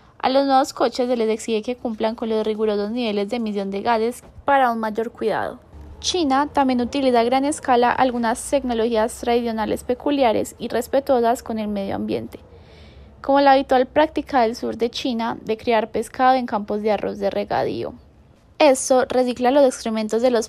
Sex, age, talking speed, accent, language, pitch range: female, 10-29, 175 wpm, Colombian, Spanish, 215-255 Hz